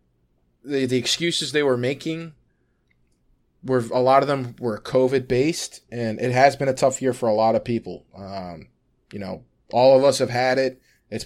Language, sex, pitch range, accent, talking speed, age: English, male, 115-140 Hz, American, 190 wpm, 20-39